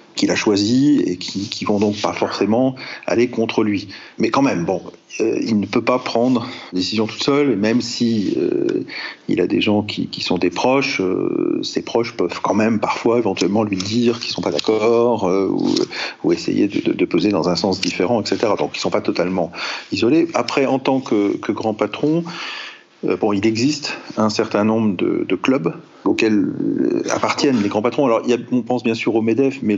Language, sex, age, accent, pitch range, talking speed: French, male, 40-59, French, 105-130 Hz, 210 wpm